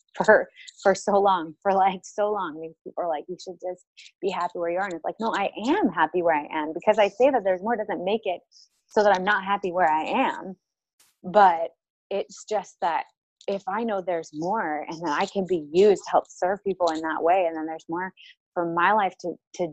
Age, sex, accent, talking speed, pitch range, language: 20-39, female, American, 235 wpm, 180-230 Hz, English